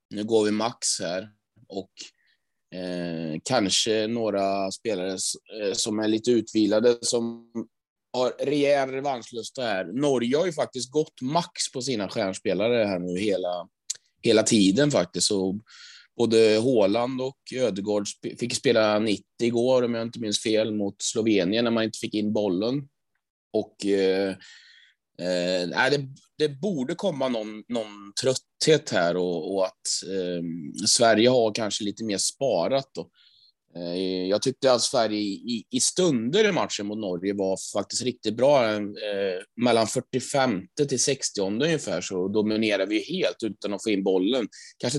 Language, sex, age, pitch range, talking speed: Swedish, male, 30-49, 100-125 Hz, 145 wpm